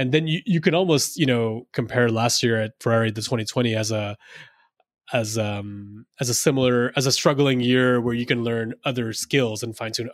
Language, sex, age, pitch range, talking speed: English, male, 20-39, 115-135 Hz, 205 wpm